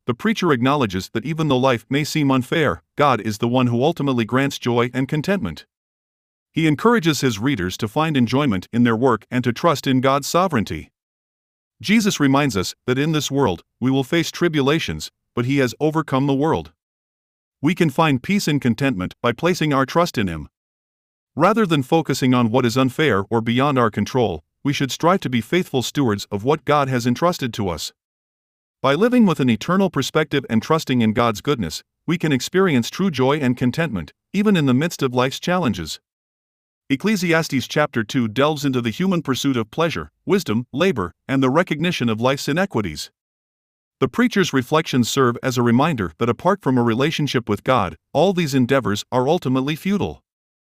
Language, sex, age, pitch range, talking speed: English, male, 50-69, 120-160 Hz, 180 wpm